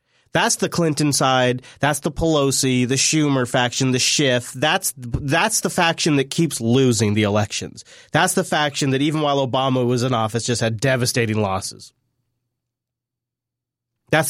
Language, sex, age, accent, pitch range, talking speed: English, male, 30-49, American, 120-170 Hz, 150 wpm